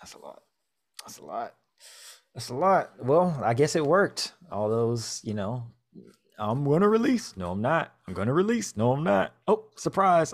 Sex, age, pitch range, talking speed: male, 20-39, 90-120 Hz, 195 wpm